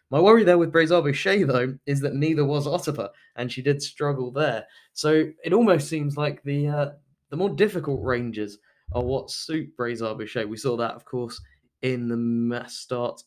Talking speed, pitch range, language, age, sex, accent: 190 wpm, 120-155 Hz, English, 10-29, male, British